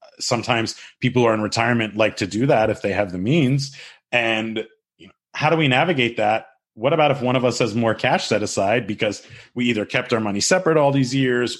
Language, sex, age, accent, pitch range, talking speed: English, male, 30-49, American, 105-130 Hz, 215 wpm